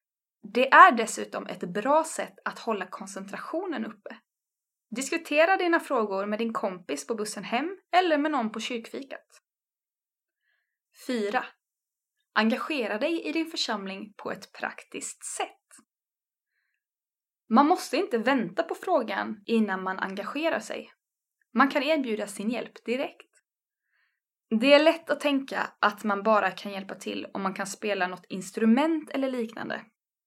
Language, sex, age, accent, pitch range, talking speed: Swedish, female, 20-39, Norwegian, 210-290 Hz, 135 wpm